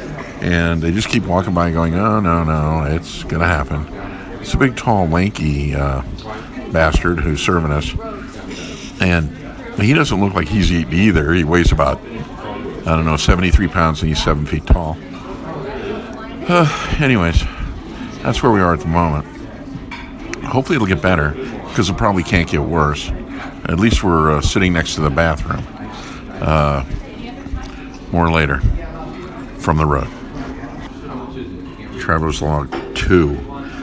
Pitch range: 75-95 Hz